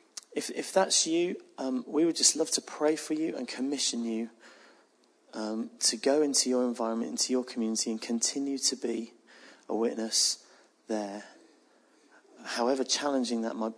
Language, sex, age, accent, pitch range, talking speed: English, male, 30-49, British, 115-140 Hz, 155 wpm